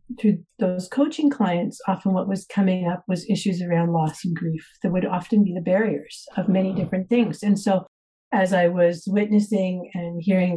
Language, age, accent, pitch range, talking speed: English, 50-69, American, 175-200 Hz, 185 wpm